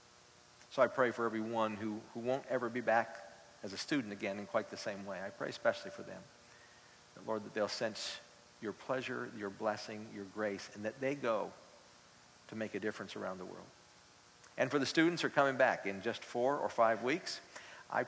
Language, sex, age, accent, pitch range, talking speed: English, male, 50-69, American, 100-125 Hz, 205 wpm